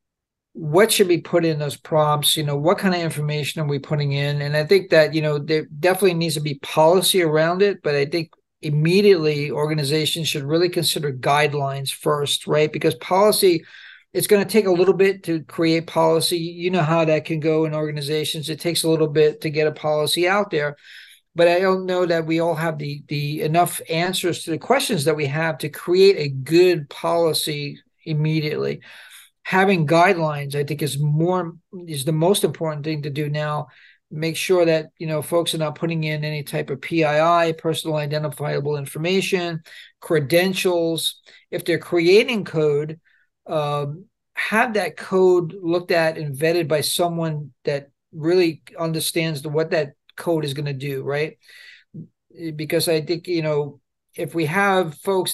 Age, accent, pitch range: 50-69, American, 150-175 Hz